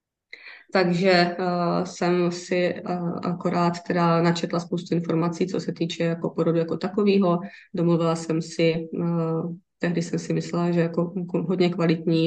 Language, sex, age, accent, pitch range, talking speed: Czech, female, 20-39, native, 165-180 Hz, 140 wpm